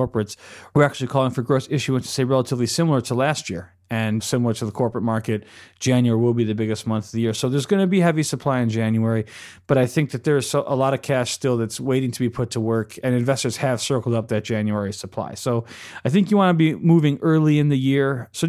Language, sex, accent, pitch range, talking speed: English, male, American, 115-140 Hz, 245 wpm